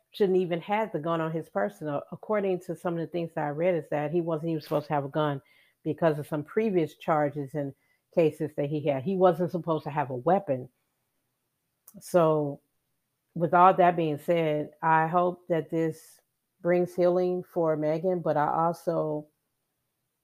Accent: American